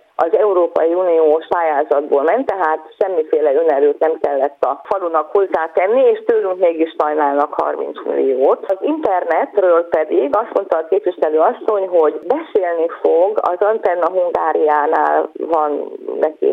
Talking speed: 125 wpm